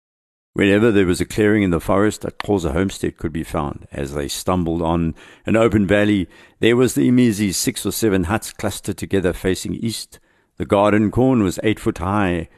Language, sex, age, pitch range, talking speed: English, male, 60-79, 85-120 Hz, 195 wpm